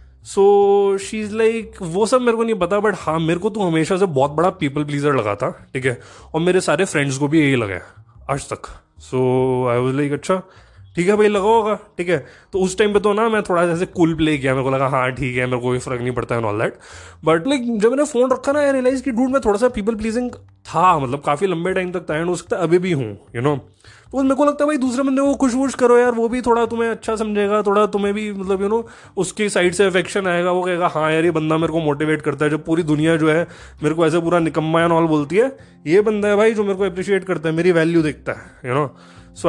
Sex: male